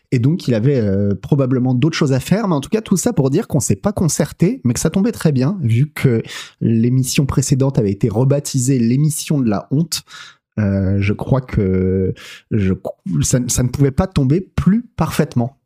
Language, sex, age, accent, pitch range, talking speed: French, male, 30-49, French, 115-165 Hz, 200 wpm